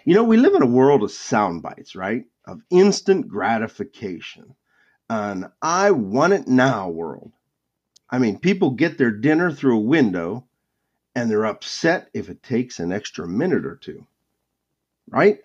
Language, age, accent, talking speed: English, 50-69, American, 160 wpm